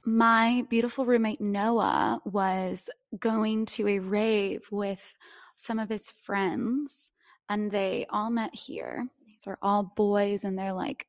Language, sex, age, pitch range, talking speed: English, female, 20-39, 200-250 Hz, 140 wpm